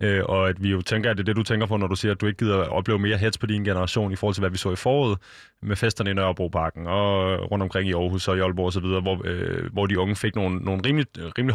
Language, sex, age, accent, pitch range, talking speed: Danish, male, 20-39, native, 90-110 Hz, 290 wpm